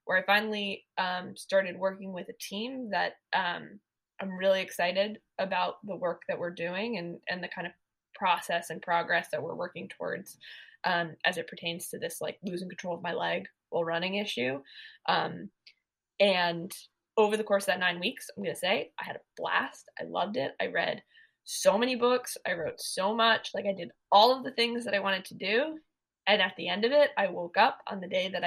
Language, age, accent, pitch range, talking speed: English, 20-39, American, 175-225 Hz, 210 wpm